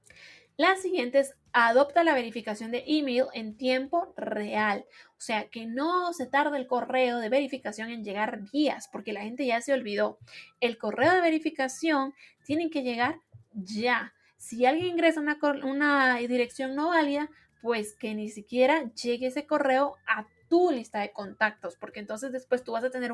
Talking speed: 170 wpm